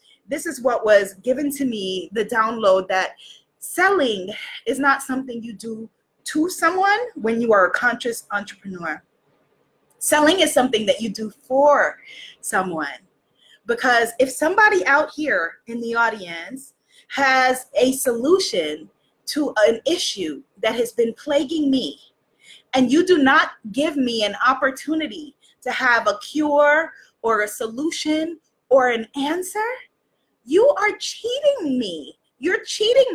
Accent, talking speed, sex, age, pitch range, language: American, 135 wpm, female, 20-39, 245-325 Hz, English